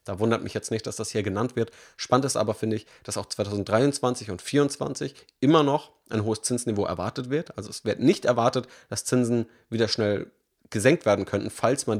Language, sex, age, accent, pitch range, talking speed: German, male, 30-49, German, 105-125 Hz, 205 wpm